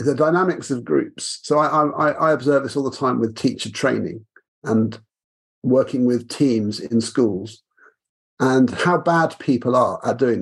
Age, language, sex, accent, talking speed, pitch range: 50-69, English, male, British, 165 wpm, 120-155 Hz